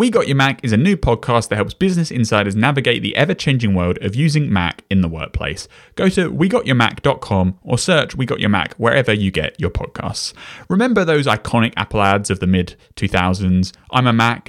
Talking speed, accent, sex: 195 wpm, British, male